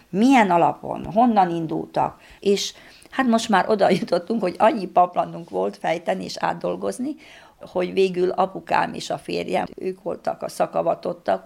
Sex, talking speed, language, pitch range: female, 140 wpm, Hungarian, 160-190 Hz